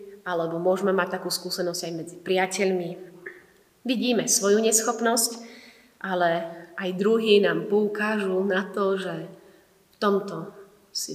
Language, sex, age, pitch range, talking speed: Slovak, female, 30-49, 180-215 Hz, 120 wpm